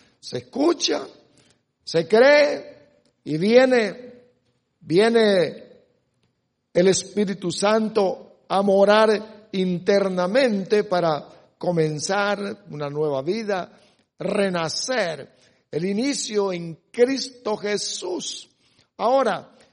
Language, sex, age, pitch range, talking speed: English, male, 60-79, 175-240 Hz, 75 wpm